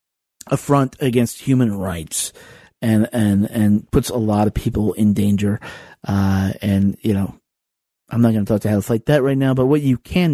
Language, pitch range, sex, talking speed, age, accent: English, 105-125 Hz, male, 195 wpm, 40-59, American